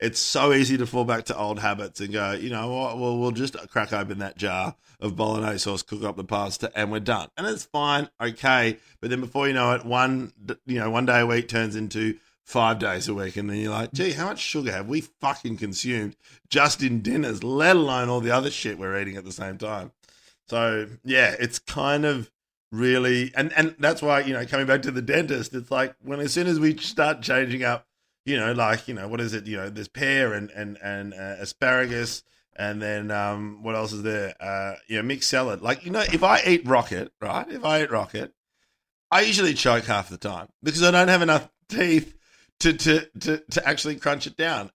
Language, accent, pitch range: English, Australian, 105-145 Hz